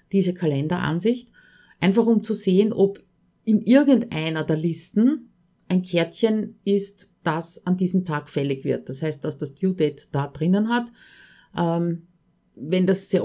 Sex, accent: female, Austrian